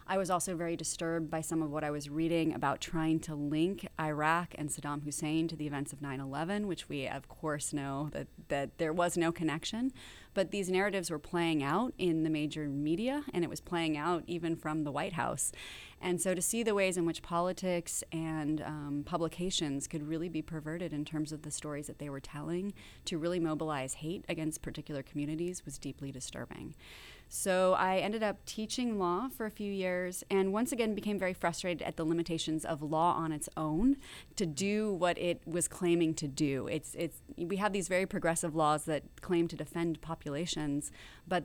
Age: 30-49